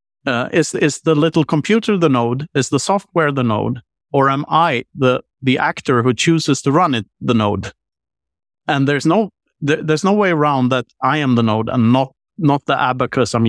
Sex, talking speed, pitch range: male, 200 wpm, 125-160 Hz